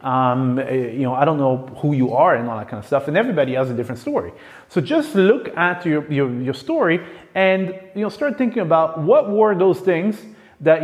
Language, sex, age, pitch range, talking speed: English, male, 30-49, 145-190 Hz, 220 wpm